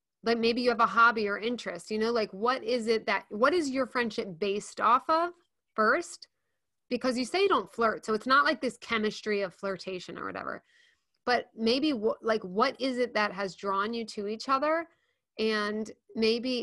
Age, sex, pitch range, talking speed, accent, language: 30-49, female, 200-250 Hz, 195 wpm, American, English